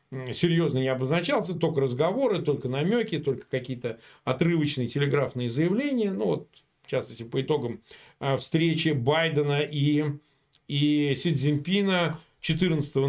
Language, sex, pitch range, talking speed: Russian, male, 140-195 Hz, 115 wpm